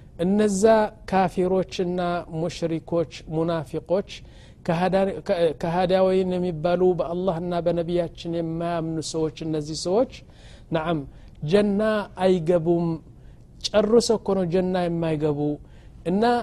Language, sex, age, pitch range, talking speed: Amharic, male, 50-69, 165-205 Hz, 70 wpm